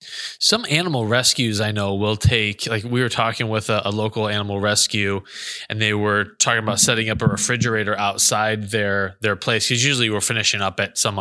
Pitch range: 105-125 Hz